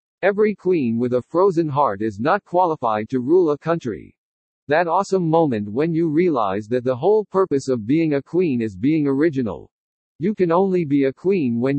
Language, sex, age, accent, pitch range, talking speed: English, male, 50-69, American, 135-175 Hz, 190 wpm